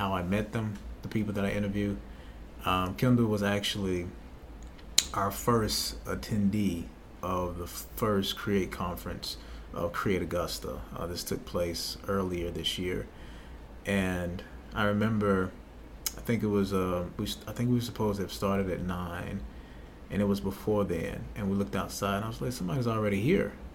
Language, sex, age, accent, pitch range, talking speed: English, male, 30-49, American, 85-105 Hz, 165 wpm